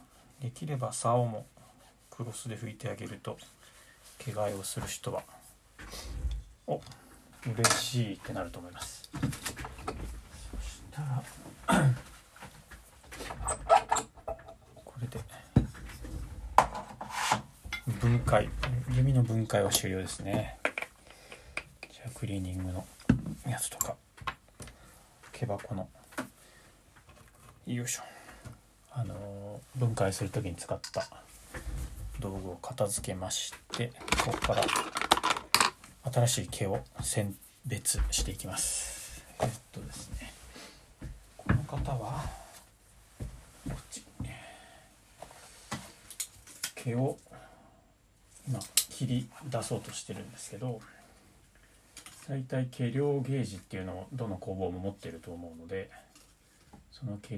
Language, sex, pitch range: Japanese, male, 95-125 Hz